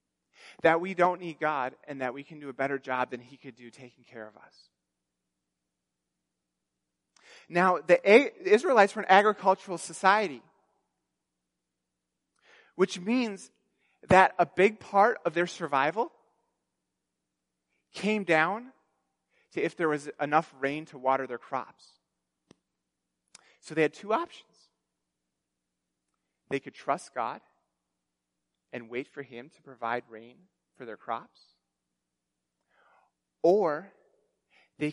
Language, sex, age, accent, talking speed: English, male, 30-49, American, 120 wpm